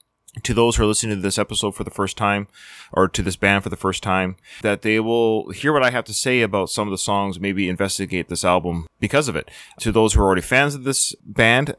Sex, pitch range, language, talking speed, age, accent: male, 95-125 Hz, English, 255 wpm, 20-39, American